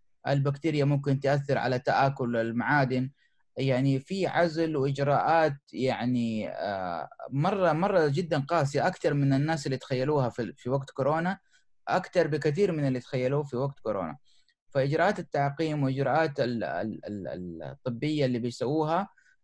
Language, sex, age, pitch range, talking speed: Arabic, male, 20-39, 130-155 Hz, 115 wpm